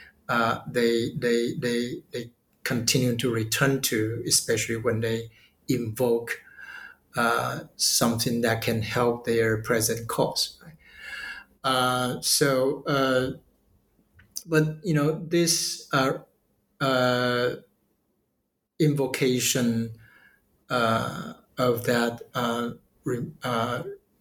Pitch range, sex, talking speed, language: 120-155 Hz, male, 95 wpm, English